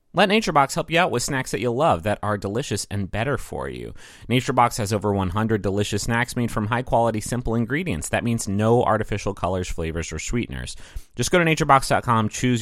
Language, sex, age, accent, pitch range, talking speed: English, male, 30-49, American, 100-150 Hz, 205 wpm